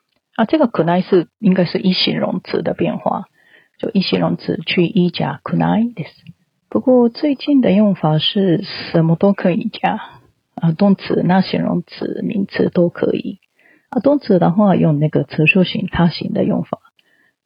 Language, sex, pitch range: Japanese, female, 170-225 Hz